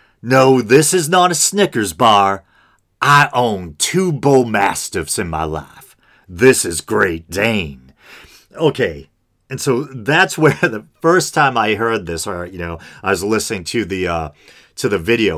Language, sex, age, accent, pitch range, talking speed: English, male, 40-59, American, 90-140 Hz, 165 wpm